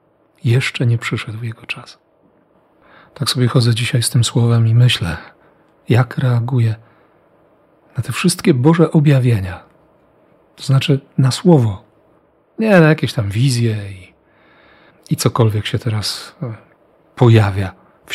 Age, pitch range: 40-59, 110-135 Hz